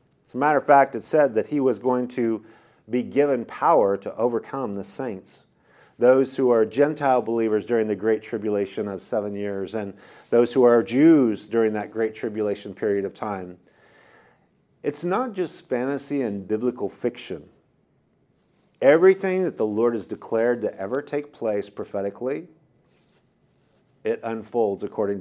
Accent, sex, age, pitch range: American, male, 40-59, 110-150 Hz